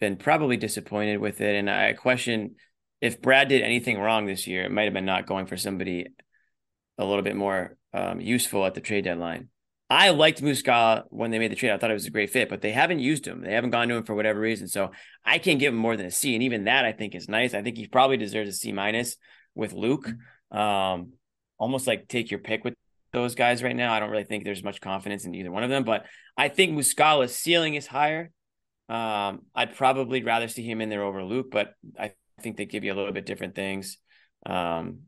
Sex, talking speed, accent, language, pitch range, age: male, 240 wpm, American, English, 100-125 Hz, 20-39